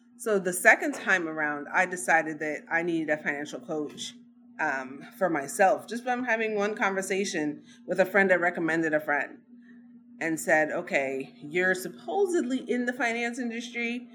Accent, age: American, 30-49